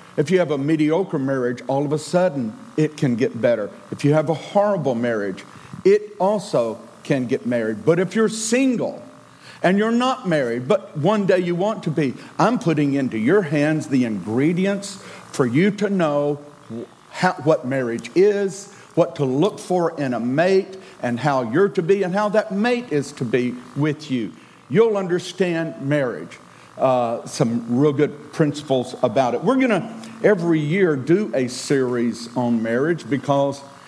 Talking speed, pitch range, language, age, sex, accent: 170 wpm, 130-185 Hz, English, 50-69, male, American